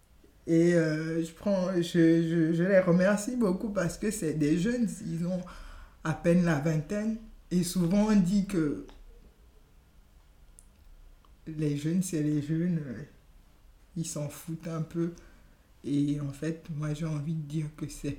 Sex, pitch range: male, 150-180 Hz